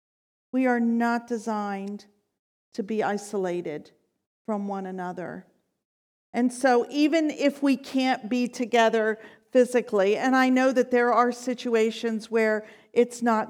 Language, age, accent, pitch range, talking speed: English, 50-69, American, 215-255 Hz, 130 wpm